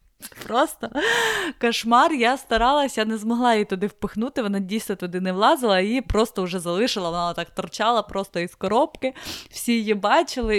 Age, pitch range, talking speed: 20-39, 185-235 Hz, 165 wpm